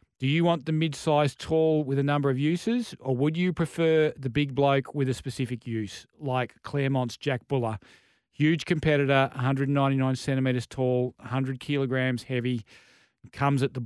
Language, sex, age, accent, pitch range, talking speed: English, male, 40-59, Australian, 125-155 Hz, 160 wpm